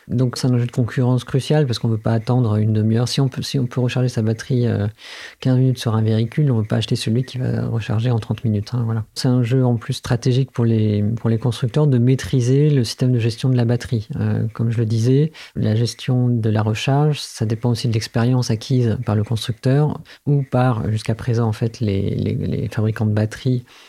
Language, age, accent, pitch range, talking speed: French, 40-59, French, 110-130 Hz, 235 wpm